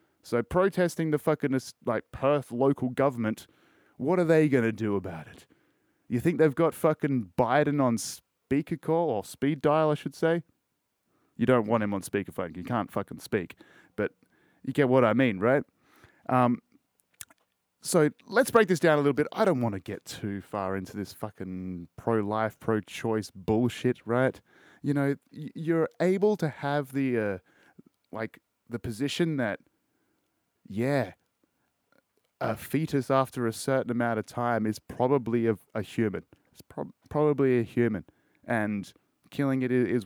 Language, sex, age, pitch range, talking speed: English, male, 30-49, 115-150 Hz, 160 wpm